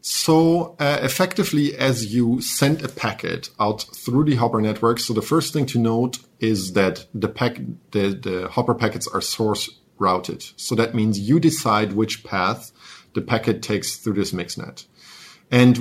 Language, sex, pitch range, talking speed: English, male, 105-135 Hz, 165 wpm